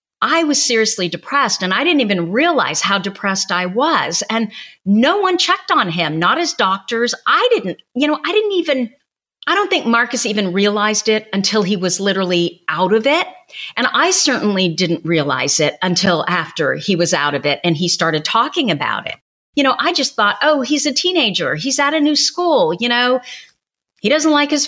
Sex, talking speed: female, 200 wpm